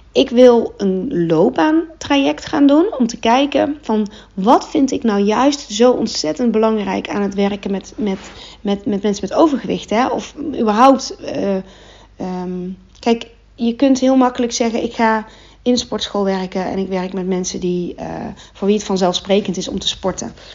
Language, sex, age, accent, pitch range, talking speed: Dutch, female, 40-59, Dutch, 185-235 Hz, 160 wpm